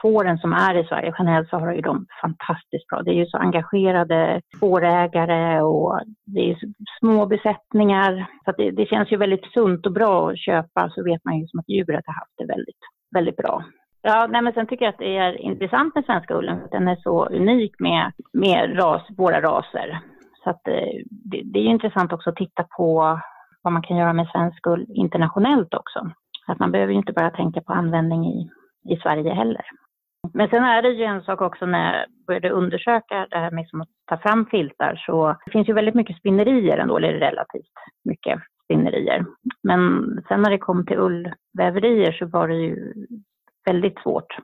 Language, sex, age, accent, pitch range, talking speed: Swedish, female, 30-49, native, 165-210 Hz, 200 wpm